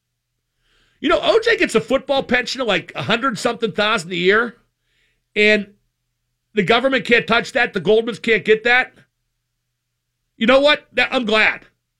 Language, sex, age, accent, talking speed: English, male, 50-69, American, 145 wpm